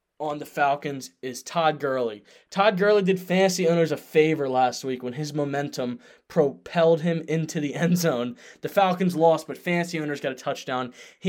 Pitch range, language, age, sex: 145-175 Hz, English, 20-39, male